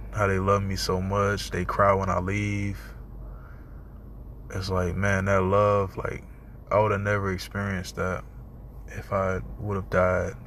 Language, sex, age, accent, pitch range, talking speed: English, male, 20-39, American, 95-105 Hz, 160 wpm